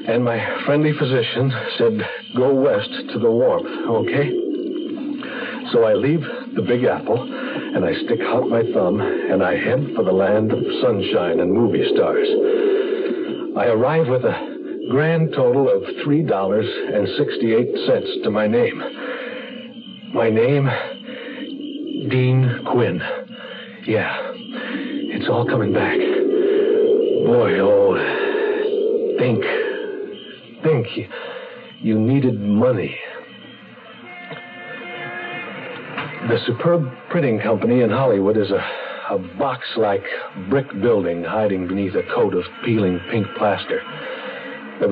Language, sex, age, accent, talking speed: English, male, 60-79, American, 110 wpm